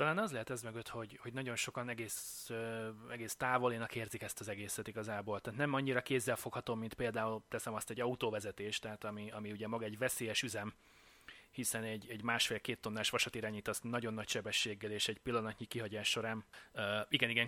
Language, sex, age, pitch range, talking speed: Hungarian, male, 30-49, 110-125 Hz, 185 wpm